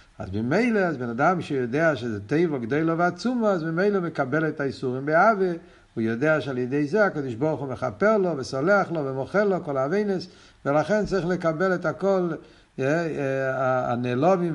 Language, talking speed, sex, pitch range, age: Hebrew, 170 wpm, male, 135-175 Hz, 60-79